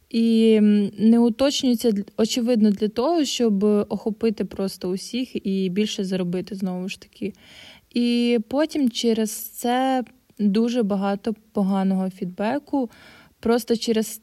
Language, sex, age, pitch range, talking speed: Ukrainian, female, 20-39, 195-235 Hz, 110 wpm